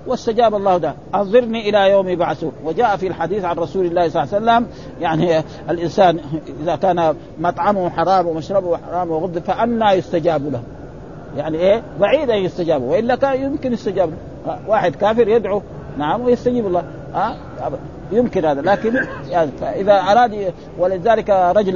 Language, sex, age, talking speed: Arabic, male, 50-69, 140 wpm